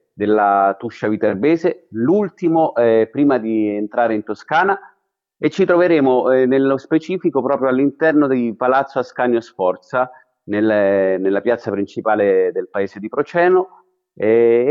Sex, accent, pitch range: male, native, 105-155 Hz